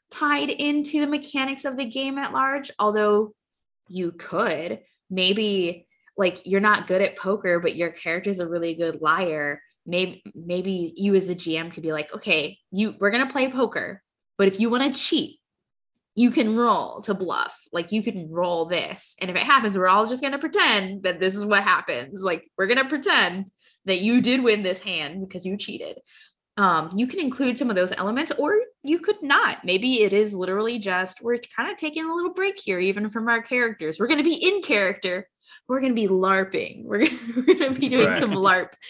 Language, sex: English, female